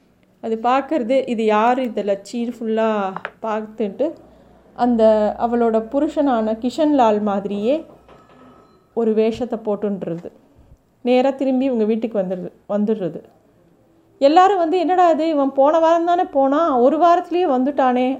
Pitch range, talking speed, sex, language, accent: 215-270 Hz, 110 wpm, female, Tamil, native